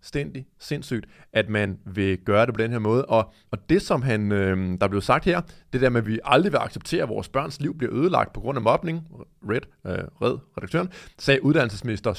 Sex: male